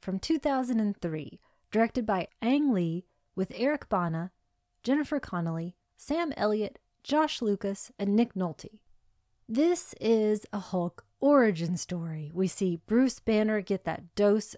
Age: 30-49